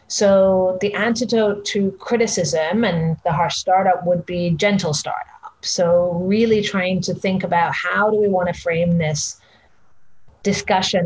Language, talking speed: English, 145 wpm